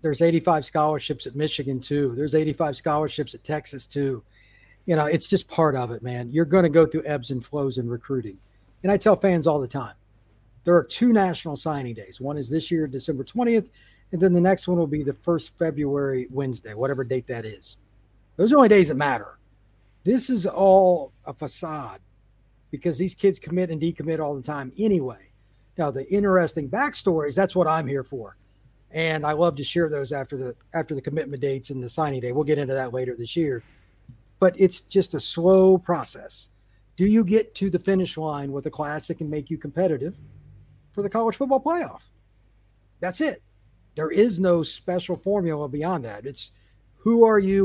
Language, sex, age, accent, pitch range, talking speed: English, male, 50-69, American, 125-175 Hz, 200 wpm